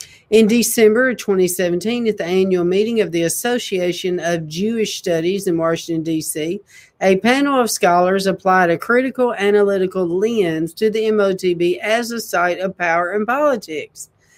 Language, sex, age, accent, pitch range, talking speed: English, female, 50-69, American, 180-225 Hz, 145 wpm